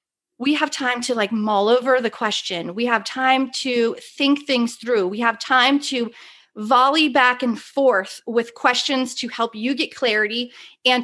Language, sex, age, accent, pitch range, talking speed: English, female, 30-49, American, 215-265 Hz, 175 wpm